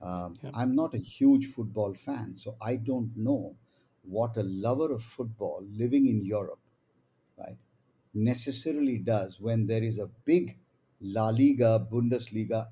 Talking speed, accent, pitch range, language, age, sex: 150 wpm, Indian, 105-125 Hz, English, 50-69, male